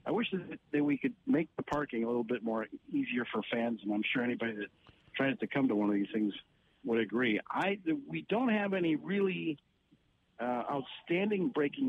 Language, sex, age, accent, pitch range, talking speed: English, male, 50-69, American, 125-180 Hz, 195 wpm